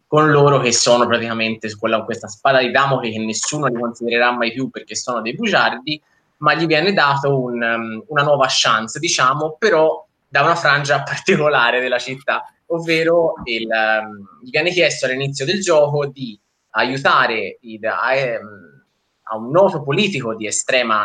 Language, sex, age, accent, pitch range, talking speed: Italian, male, 20-39, native, 120-155 Hz, 155 wpm